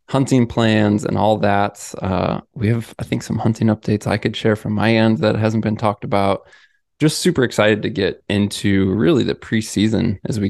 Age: 20-39